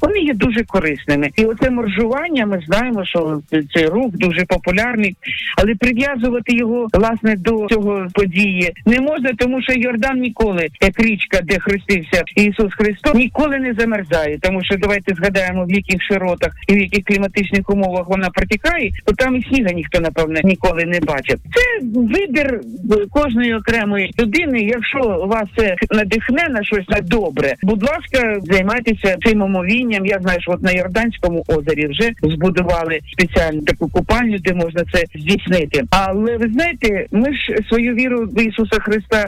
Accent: native